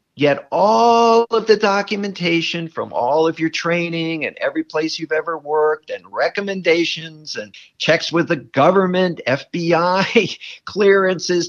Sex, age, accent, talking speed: male, 50-69, American, 130 wpm